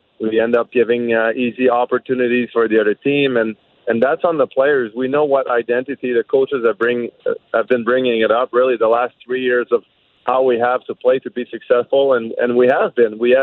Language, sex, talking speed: English, male, 230 wpm